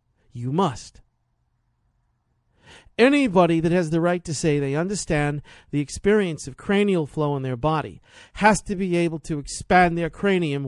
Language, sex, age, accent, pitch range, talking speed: English, male, 50-69, American, 125-180 Hz, 150 wpm